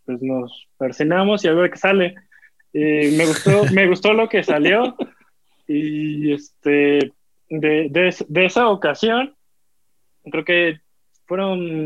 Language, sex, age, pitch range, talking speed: Spanish, male, 20-39, 150-190 Hz, 130 wpm